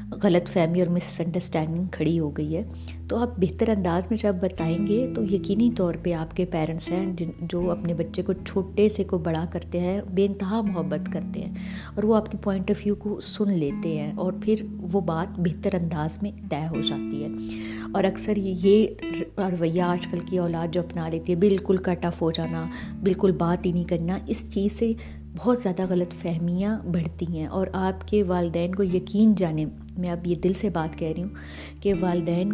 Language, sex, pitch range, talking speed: Urdu, female, 170-200 Hz, 205 wpm